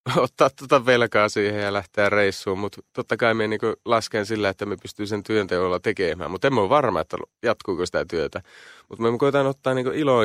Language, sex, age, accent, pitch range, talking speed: Finnish, male, 30-49, native, 90-115 Hz, 200 wpm